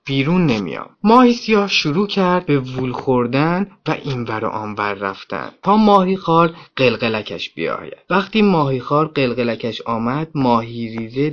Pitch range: 120-165 Hz